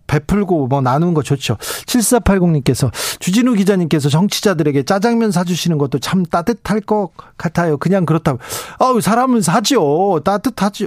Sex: male